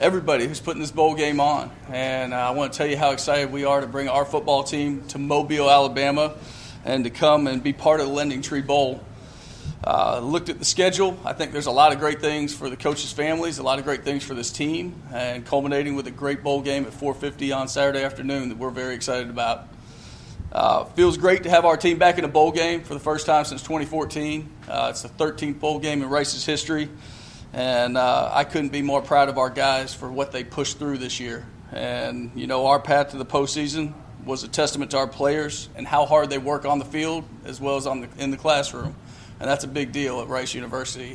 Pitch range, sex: 130-150 Hz, male